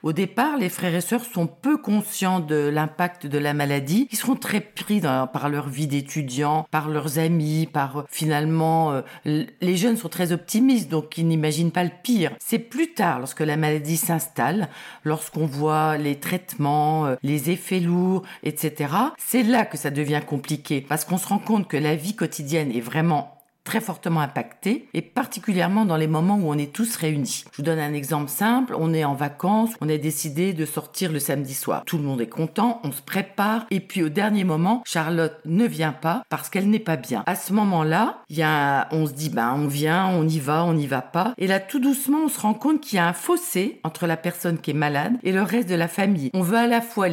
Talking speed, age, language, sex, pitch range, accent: 225 wpm, 40-59, French, female, 150-205 Hz, French